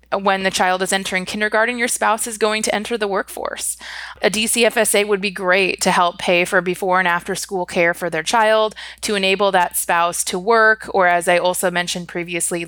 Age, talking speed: 20-39, 205 wpm